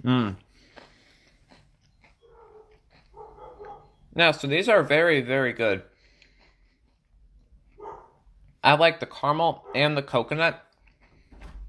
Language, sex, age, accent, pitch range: English, male, 20-39, American, 115-150 Hz